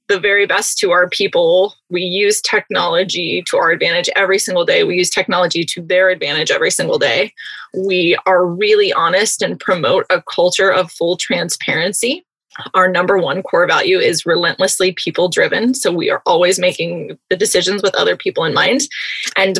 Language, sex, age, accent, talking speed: English, female, 20-39, American, 175 wpm